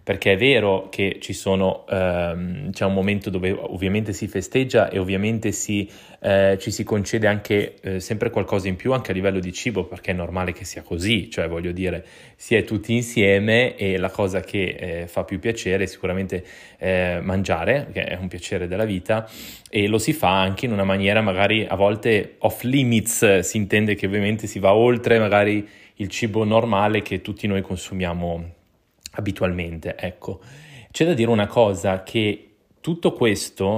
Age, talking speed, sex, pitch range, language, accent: 20-39, 180 wpm, male, 95-110 Hz, Italian, native